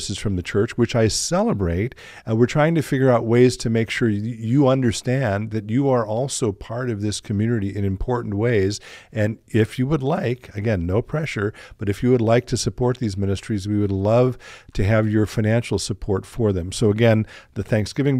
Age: 50-69